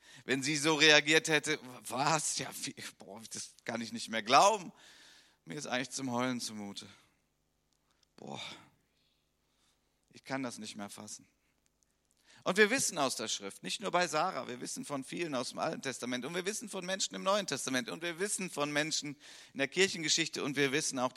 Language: German